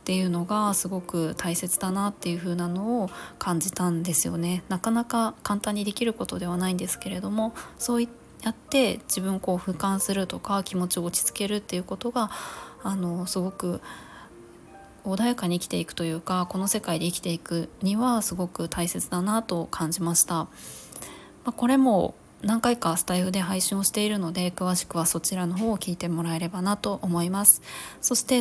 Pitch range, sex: 175-220 Hz, female